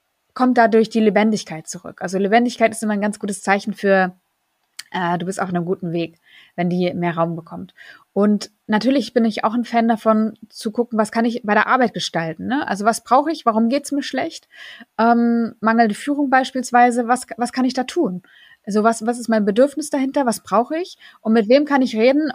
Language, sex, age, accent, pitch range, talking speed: German, female, 20-39, German, 205-255 Hz, 210 wpm